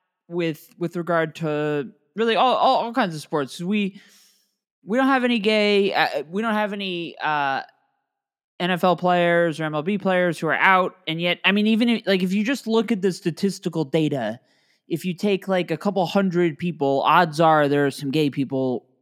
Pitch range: 145-205 Hz